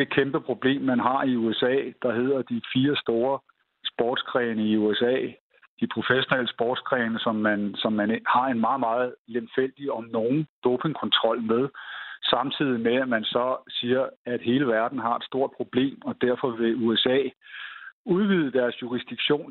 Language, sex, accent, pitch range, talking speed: Danish, male, native, 115-150 Hz, 155 wpm